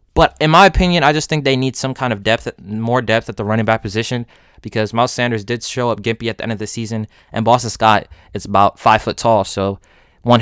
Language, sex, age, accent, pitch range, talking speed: English, male, 20-39, American, 110-135 Hz, 250 wpm